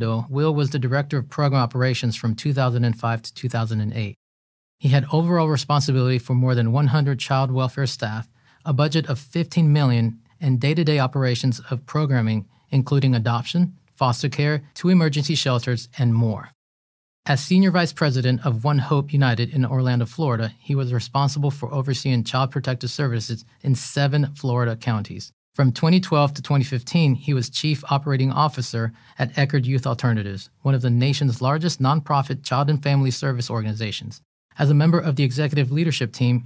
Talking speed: 160 wpm